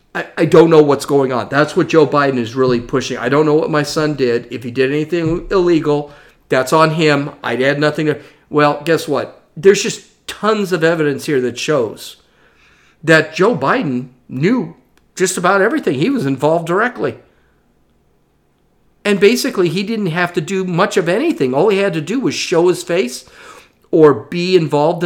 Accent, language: American, English